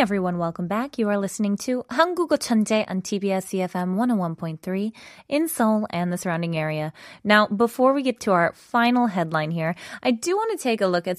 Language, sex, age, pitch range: Korean, female, 20-39, 175-250 Hz